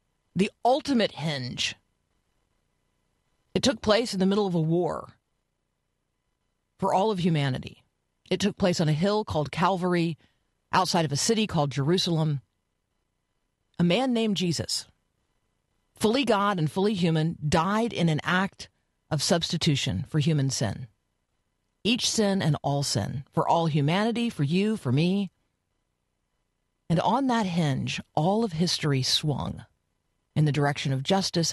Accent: American